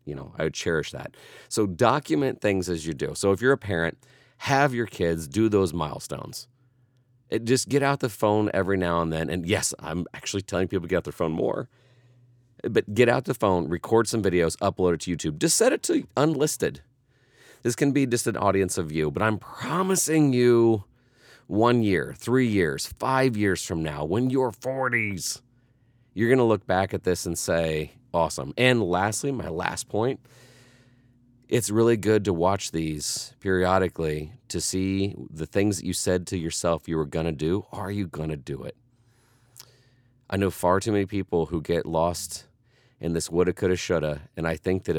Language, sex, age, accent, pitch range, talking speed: English, male, 30-49, American, 85-120 Hz, 190 wpm